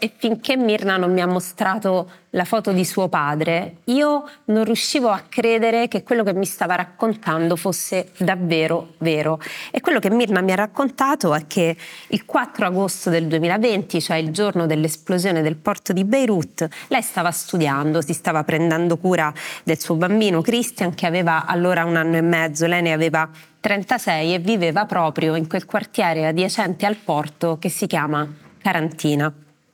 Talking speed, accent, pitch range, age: 170 wpm, native, 160-205 Hz, 30-49